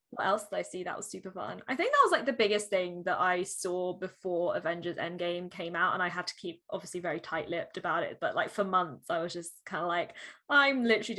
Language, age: English, 10-29